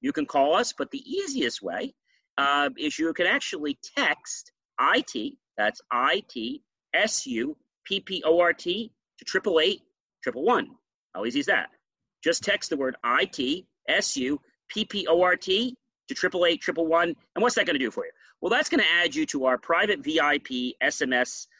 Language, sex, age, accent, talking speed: English, male, 40-59, American, 155 wpm